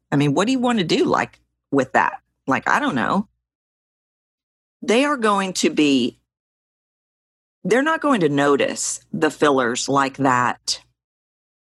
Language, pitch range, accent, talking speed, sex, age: English, 130-205 Hz, American, 150 wpm, female, 50-69